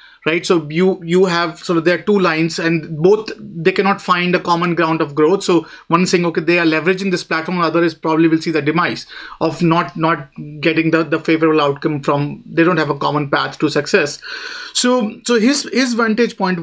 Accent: Indian